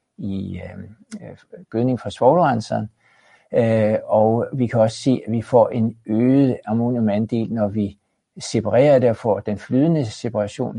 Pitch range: 110-140 Hz